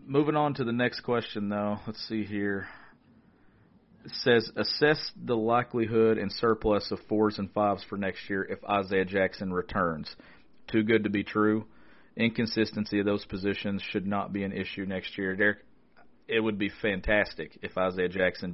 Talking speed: 170 wpm